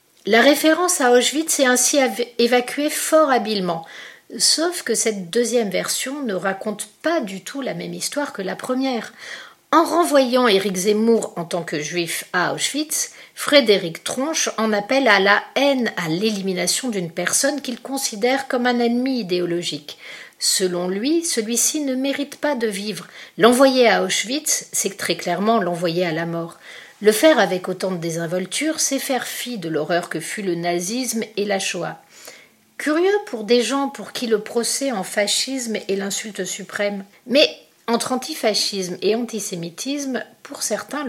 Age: 50-69